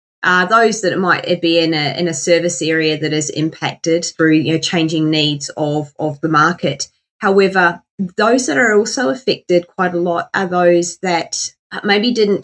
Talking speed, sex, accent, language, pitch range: 185 wpm, female, Australian, English, 165-190 Hz